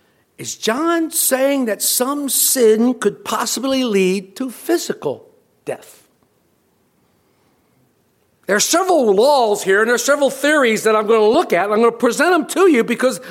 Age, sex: 60-79, male